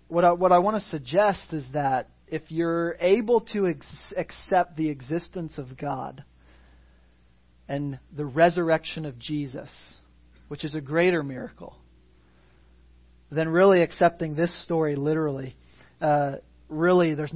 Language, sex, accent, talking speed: English, male, American, 125 wpm